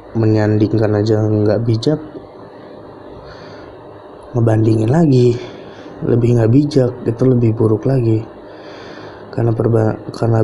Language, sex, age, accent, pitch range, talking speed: Indonesian, male, 20-39, native, 105-120 Hz, 90 wpm